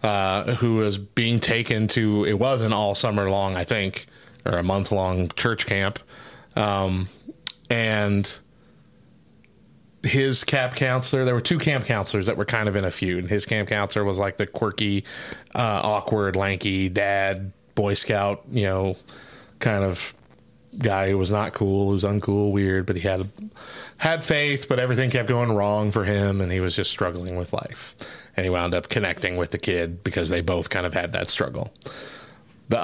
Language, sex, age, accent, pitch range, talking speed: English, male, 30-49, American, 100-125 Hz, 175 wpm